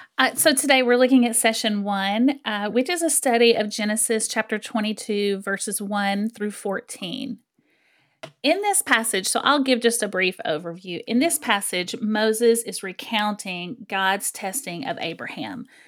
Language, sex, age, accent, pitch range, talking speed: English, female, 30-49, American, 195-240 Hz, 155 wpm